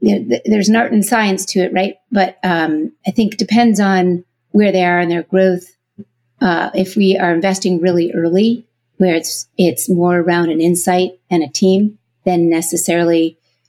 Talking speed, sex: 185 wpm, female